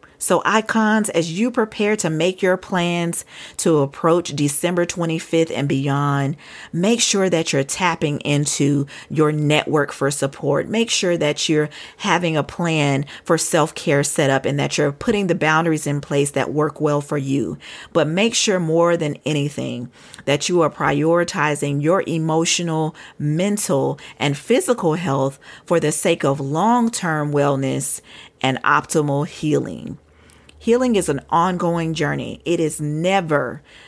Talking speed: 145 wpm